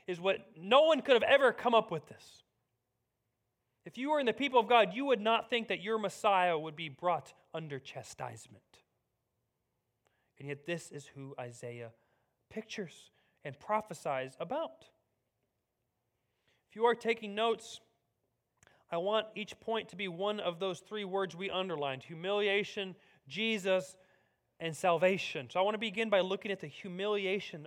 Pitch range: 175-230 Hz